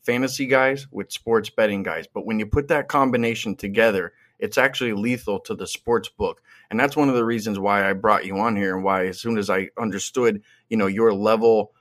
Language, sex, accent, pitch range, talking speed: English, male, American, 100-120 Hz, 220 wpm